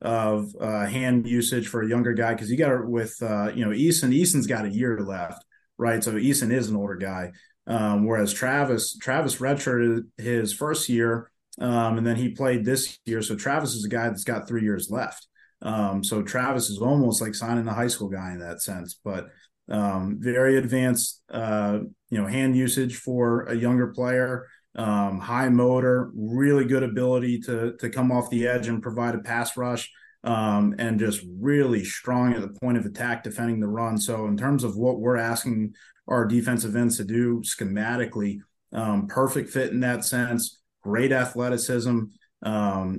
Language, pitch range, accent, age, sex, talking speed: English, 105-125 Hz, American, 20-39, male, 185 wpm